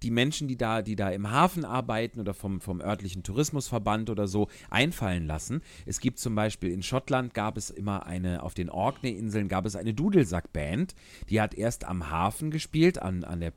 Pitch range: 100-135 Hz